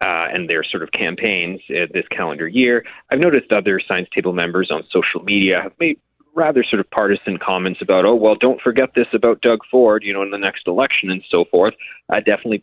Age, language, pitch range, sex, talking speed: 40-59, English, 100-130 Hz, male, 220 wpm